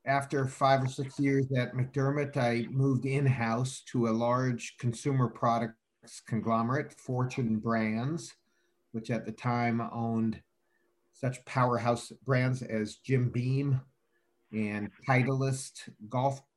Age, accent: 50-69, American